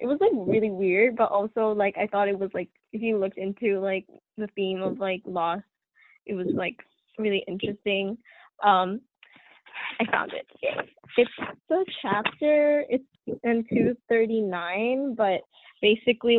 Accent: American